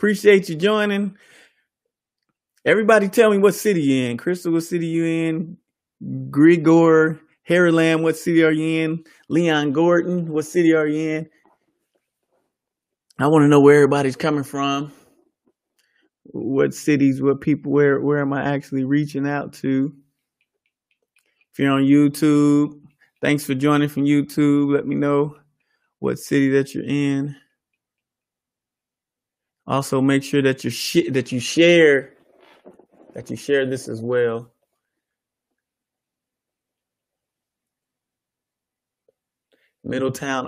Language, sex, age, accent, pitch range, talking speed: English, male, 20-39, American, 140-165 Hz, 120 wpm